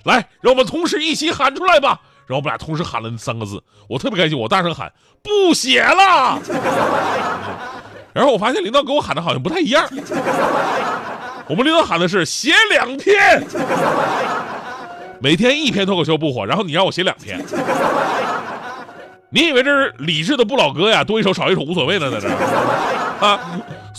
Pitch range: 165-260 Hz